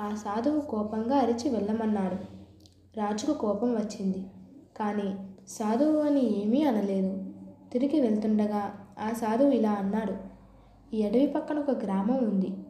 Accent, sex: native, female